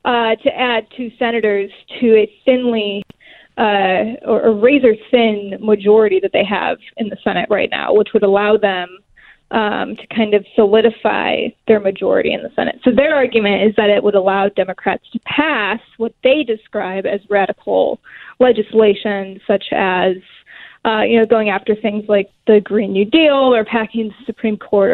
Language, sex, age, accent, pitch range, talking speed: English, female, 10-29, American, 205-240 Hz, 170 wpm